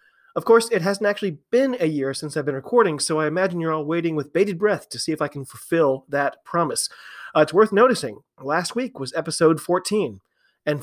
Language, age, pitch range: English, 30-49, 150-195 Hz